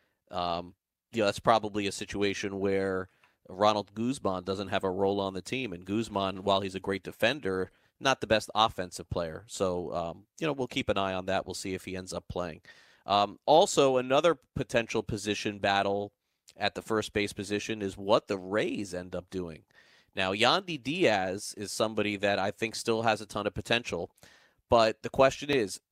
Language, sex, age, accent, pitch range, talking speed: English, male, 30-49, American, 100-130 Hz, 190 wpm